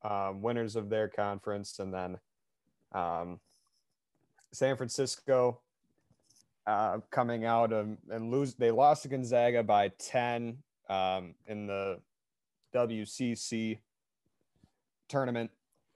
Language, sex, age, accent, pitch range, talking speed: English, male, 30-49, American, 105-130 Hz, 100 wpm